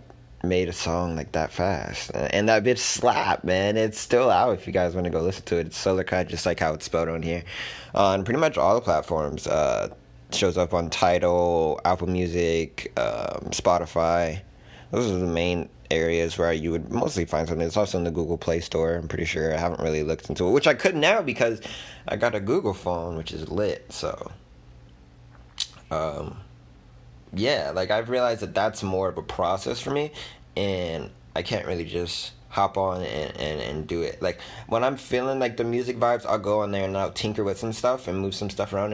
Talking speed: 215 wpm